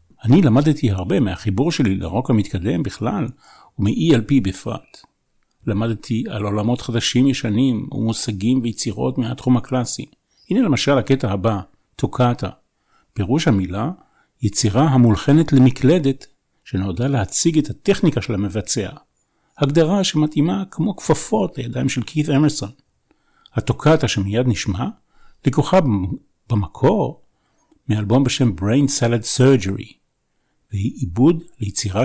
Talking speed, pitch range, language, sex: 105 wpm, 105-140 Hz, Hebrew, male